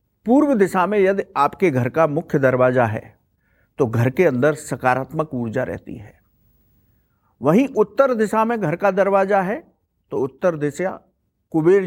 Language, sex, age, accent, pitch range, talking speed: English, male, 50-69, Indian, 125-175 Hz, 150 wpm